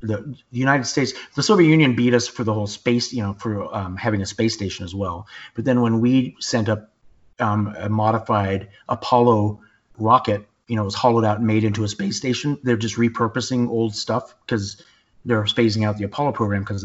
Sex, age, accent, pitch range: male, 30-49, American, 105-130 Hz